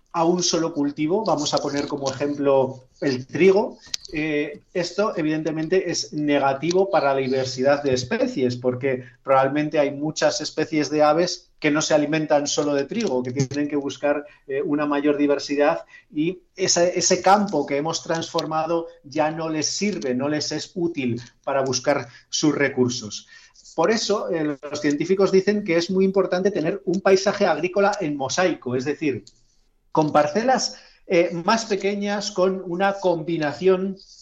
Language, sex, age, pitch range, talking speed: Spanish, male, 40-59, 135-175 Hz, 155 wpm